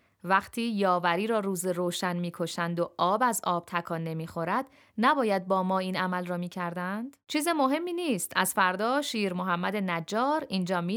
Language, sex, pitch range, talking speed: Persian, female, 175-230 Hz, 160 wpm